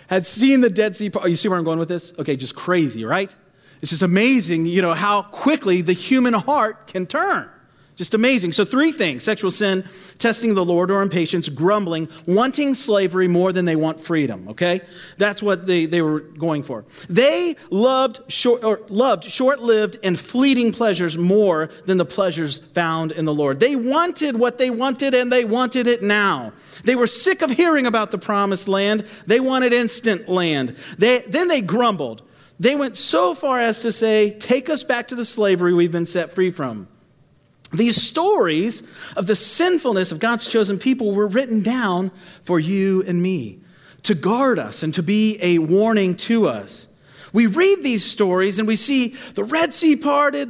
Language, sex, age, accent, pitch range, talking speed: English, male, 40-59, American, 175-255 Hz, 185 wpm